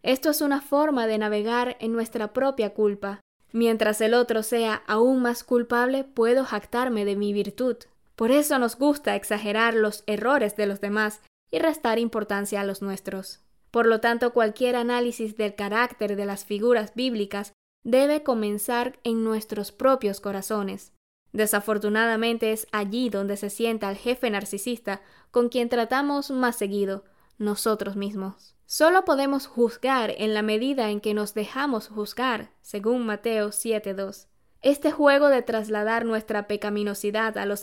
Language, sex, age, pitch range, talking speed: Spanish, female, 10-29, 205-245 Hz, 150 wpm